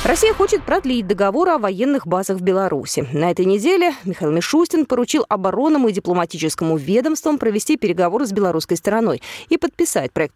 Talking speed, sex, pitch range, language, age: 155 wpm, female, 185-310 Hz, Russian, 20-39